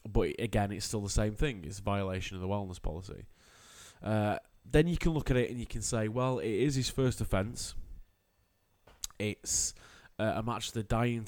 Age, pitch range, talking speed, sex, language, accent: 20-39, 95-110 Hz, 195 wpm, male, English, British